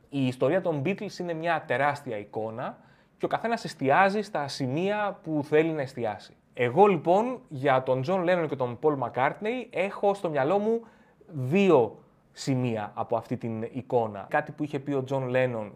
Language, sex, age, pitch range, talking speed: Greek, male, 20-39, 125-185 Hz, 170 wpm